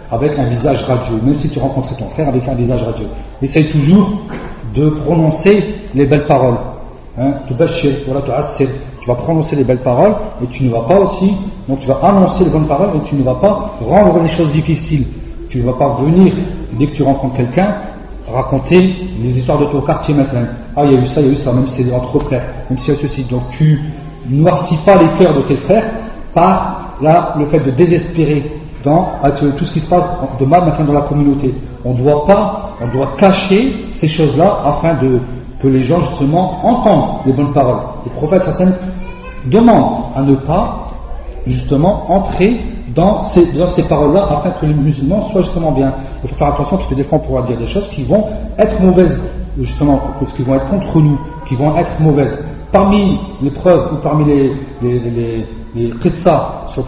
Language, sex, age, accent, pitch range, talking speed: French, male, 40-59, French, 135-175 Hz, 210 wpm